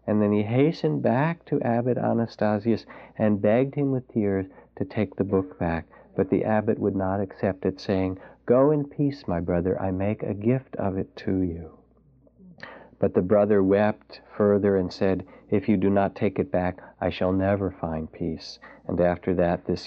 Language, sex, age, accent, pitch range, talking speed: English, male, 50-69, American, 90-115 Hz, 185 wpm